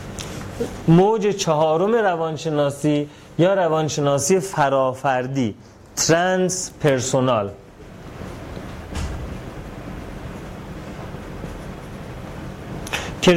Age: 30-49